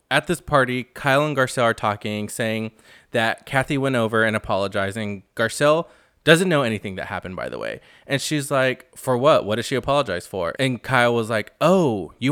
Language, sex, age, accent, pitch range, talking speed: English, male, 20-39, American, 110-150 Hz, 195 wpm